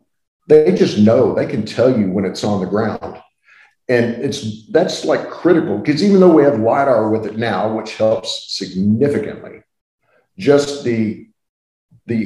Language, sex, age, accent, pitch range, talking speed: English, male, 50-69, American, 105-130 Hz, 155 wpm